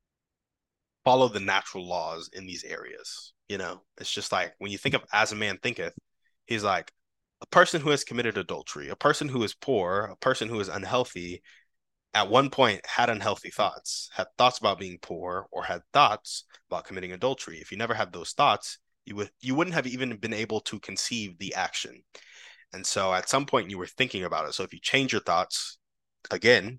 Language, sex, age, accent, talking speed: English, male, 20-39, American, 200 wpm